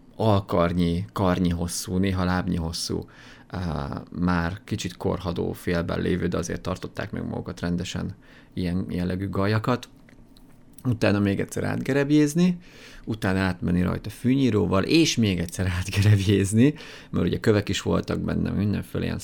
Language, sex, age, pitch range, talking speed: Hungarian, male, 30-49, 90-120 Hz, 130 wpm